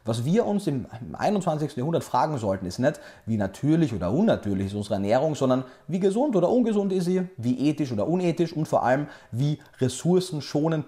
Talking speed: 180 wpm